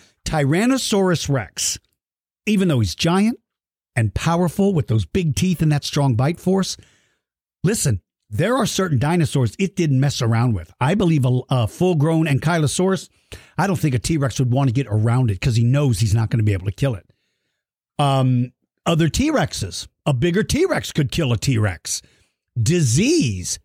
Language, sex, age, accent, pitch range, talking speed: English, male, 50-69, American, 115-165 Hz, 170 wpm